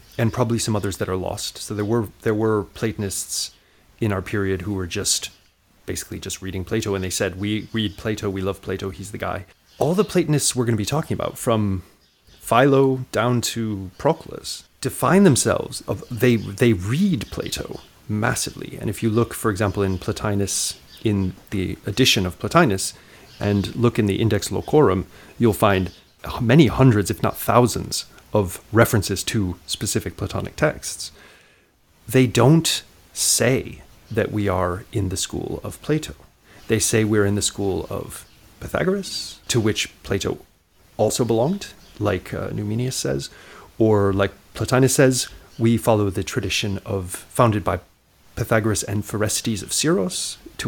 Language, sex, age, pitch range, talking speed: English, male, 30-49, 95-115 Hz, 160 wpm